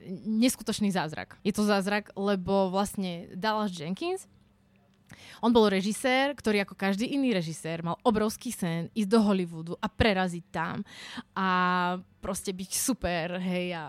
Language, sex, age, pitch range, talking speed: Slovak, female, 20-39, 180-220 Hz, 140 wpm